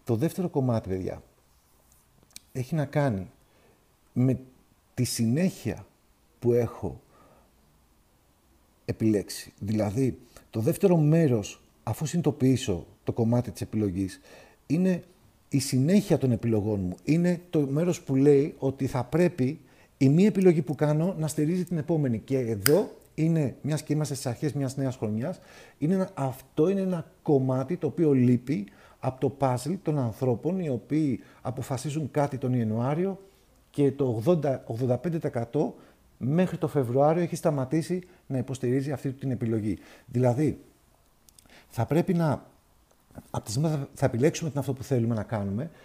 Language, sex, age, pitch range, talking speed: Greek, male, 50-69, 120-160 Hz, 135 wpm